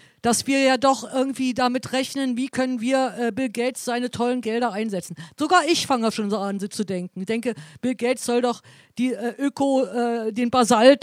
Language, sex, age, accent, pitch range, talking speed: German, female, 50-69, German, 215-255 Hz, 200 wpm